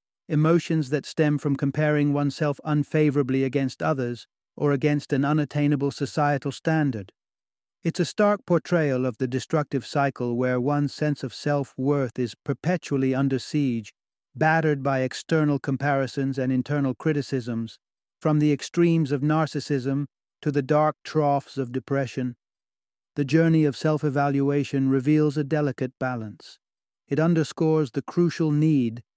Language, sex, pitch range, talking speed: English, male, 130-155 Hz, 130 wpm